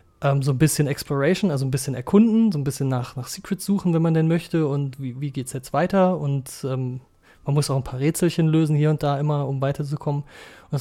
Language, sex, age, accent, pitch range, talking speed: German, male, 30-49, German, 130-155 Hz, 235 wpm